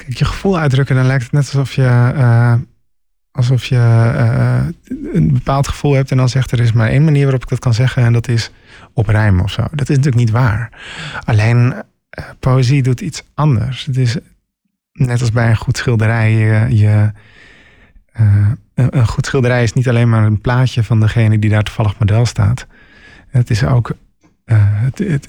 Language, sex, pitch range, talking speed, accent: Dutch, male, 110-135 Hz, 185 wpm, Dutch